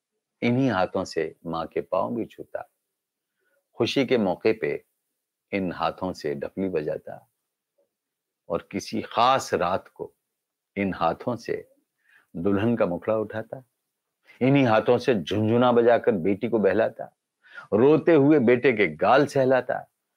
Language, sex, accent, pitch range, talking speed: Hindi, male, native, 105-160 Hz, 130 wpm